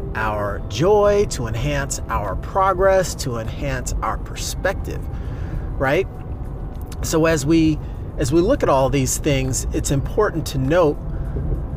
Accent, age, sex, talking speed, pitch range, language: American, 30-49, male, 125 wpm, 120-160 Hz, English